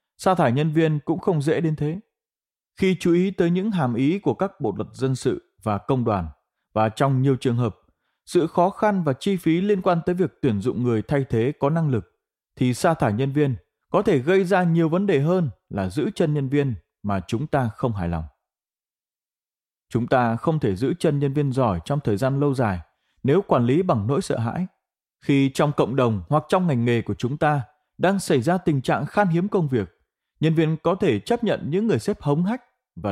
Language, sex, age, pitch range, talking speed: Vietnamese, male, 20-39, 120-175 Hz, 225 wpm